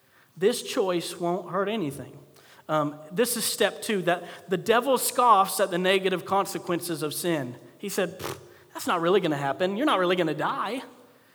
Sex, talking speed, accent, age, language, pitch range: male, 180 wpm, American, 40-59, English, 170-240 Hz